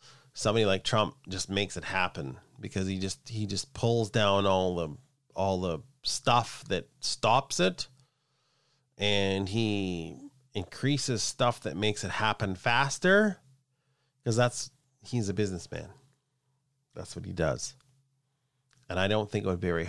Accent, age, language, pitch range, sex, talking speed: American, 30-49, English, 95-135 Hz, male, 145 wpm